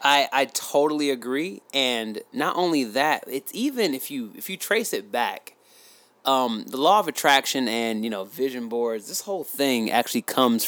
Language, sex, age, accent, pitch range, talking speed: English, male, 30-49, American, 115-155 Hz, 180 wpm